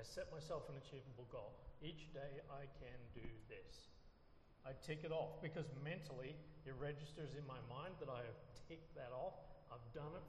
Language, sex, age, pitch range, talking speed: English, male, 40-59, 125-155 Hz, 180 wpm